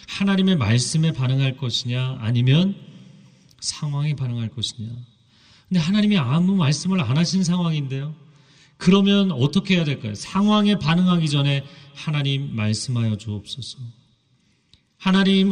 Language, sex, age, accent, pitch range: Korean, male, 40-59, native, 125-180 Hz